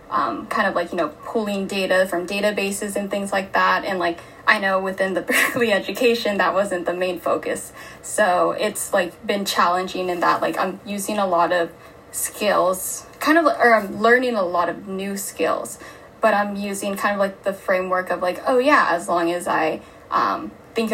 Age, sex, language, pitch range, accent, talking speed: 10-29, female, English, 185-225 Hz, American, 200 wpm